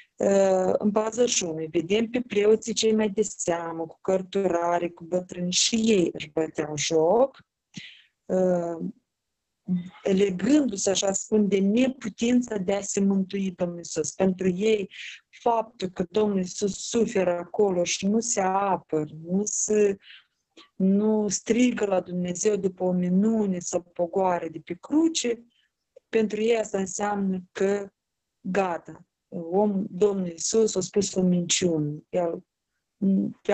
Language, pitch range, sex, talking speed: Romanian, 180-215 Hz, female, 120 wpm